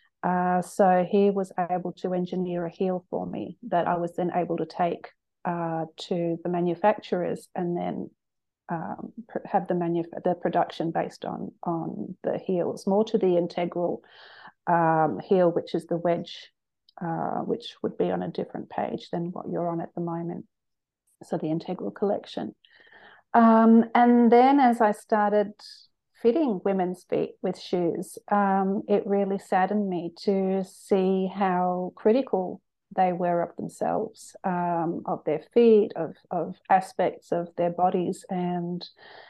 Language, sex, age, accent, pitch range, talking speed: English, female, 40-59, Australian, 175-200 Hz, 155 wpm